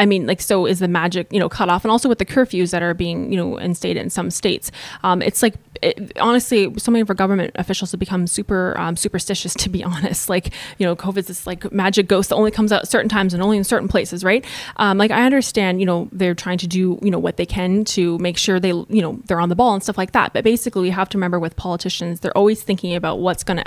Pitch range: 175-210 Hz